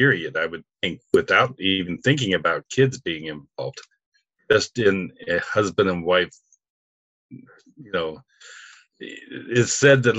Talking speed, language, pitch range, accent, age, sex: 135 wpm, English, 95-130 Hz, American, 50-69, male